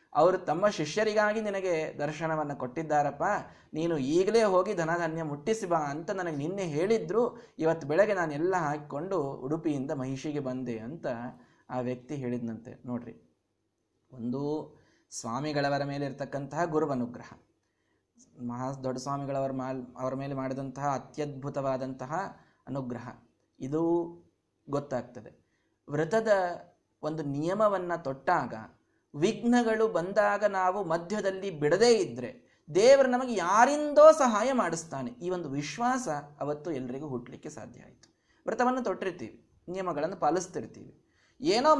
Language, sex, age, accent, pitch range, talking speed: Kannada, male, 20-39, native, 140-220 Hz, 100 wpm